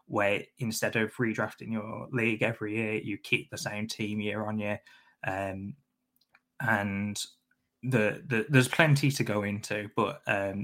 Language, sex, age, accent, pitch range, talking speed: English, male, 20-39, British, 105-120 Hz, 150 wpm